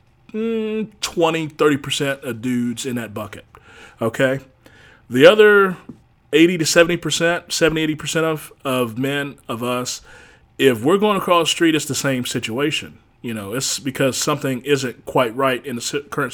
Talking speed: 155 wpm